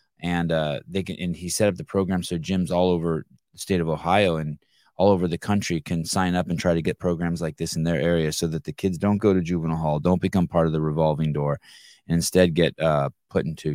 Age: 20-39